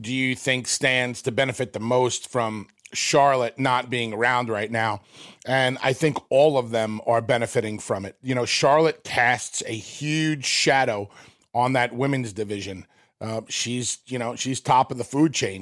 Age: 30-49